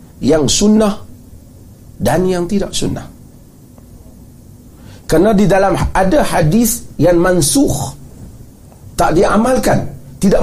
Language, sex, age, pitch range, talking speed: Malay, male, 40-59, 120-200 Hz, 90 wpm